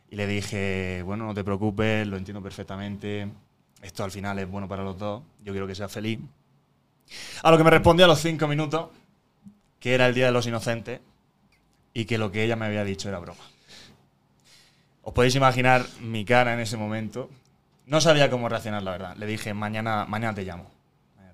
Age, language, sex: 20-39, Spanish, male